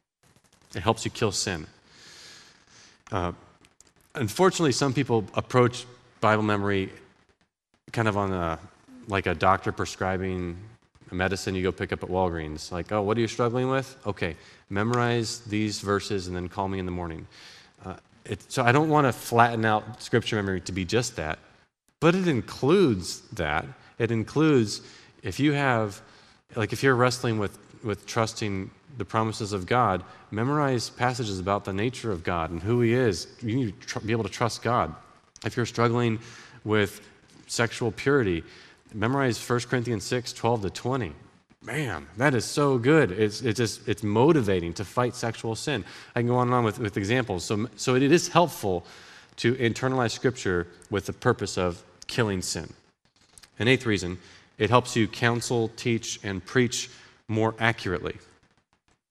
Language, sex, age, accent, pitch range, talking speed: English, male, 30-49, American, 100-125 Hz, 165 wpm